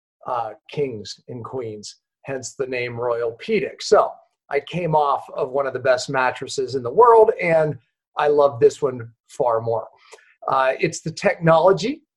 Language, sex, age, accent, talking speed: English, male, 40-59, American, 160 wpm